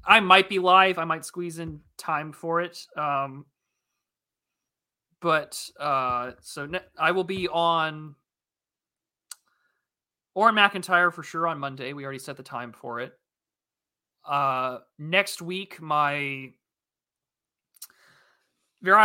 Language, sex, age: English, male, 20-39